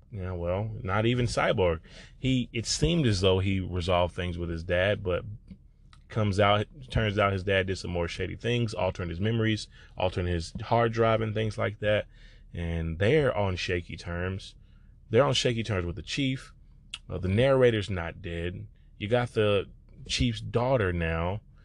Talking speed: 170 wpm